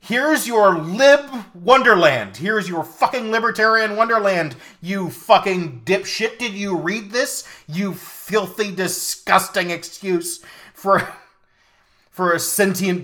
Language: English